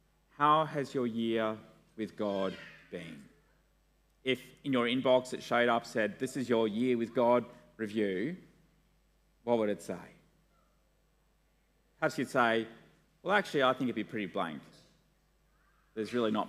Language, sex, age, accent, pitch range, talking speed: English, male, 30-49, Australian, 125-170 Hz, 145 wpm